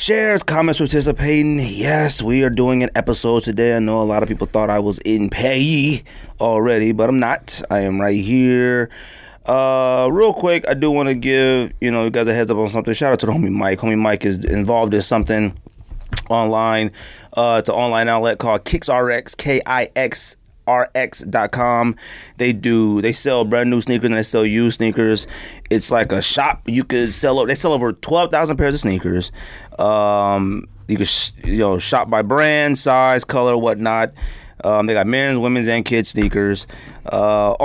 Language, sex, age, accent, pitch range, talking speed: English, male, 30-49, American, 105-125 Hz, 195 wpm